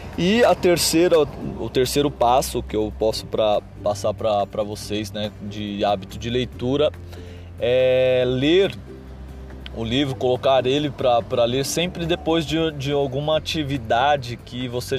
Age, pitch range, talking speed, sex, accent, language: 20-39, 115-150 Hz, 135 wpm, male, Brazilian, Portuguese